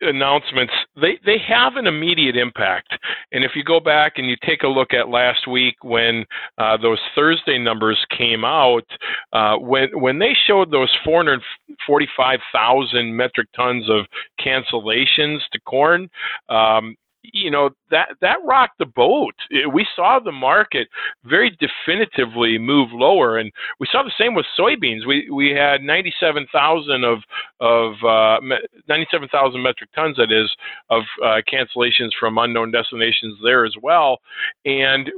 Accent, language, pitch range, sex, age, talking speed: American, English, 115-150 Hz, male, 40-59, 150 wpm